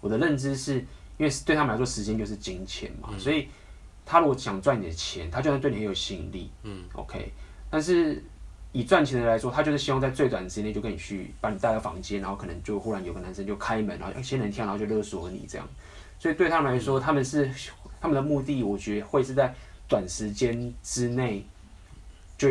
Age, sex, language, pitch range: 20-39, male, Chinese, 95-125 Hz